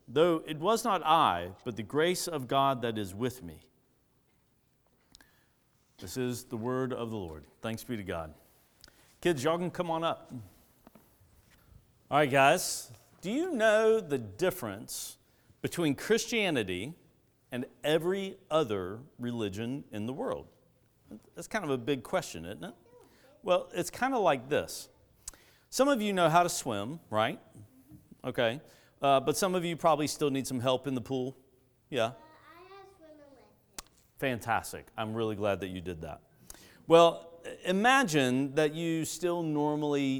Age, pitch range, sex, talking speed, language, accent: 50-69, 110-165 Hz, male, 150 wpm, English, American